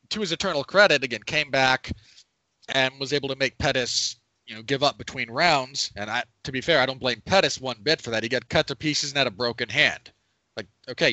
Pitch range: 120-155 Hz